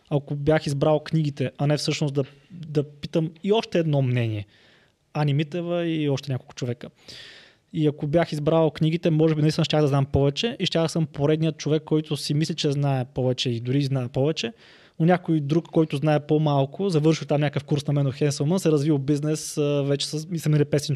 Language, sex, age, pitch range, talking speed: Bulgarian, male, 20-39, 140-160 Hz, 195 wpm